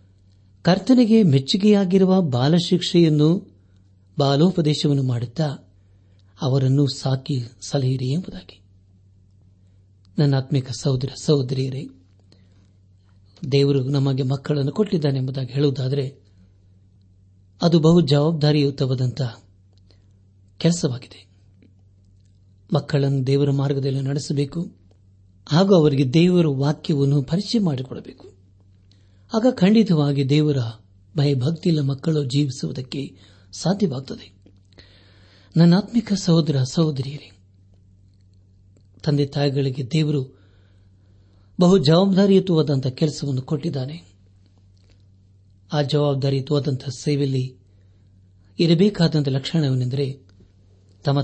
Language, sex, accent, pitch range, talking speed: Kannada, male, native, 95-150 Hz, 65 wpm